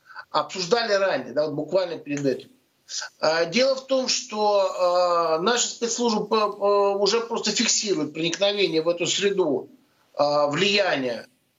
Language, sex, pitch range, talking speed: Russian, male, 190-235 Hz, 110 wpm